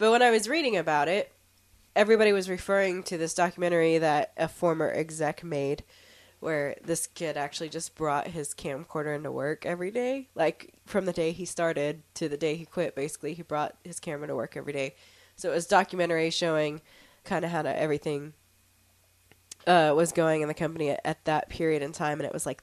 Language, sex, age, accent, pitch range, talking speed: English, female, 20-39, American, 155-190 Hz, 200 wpm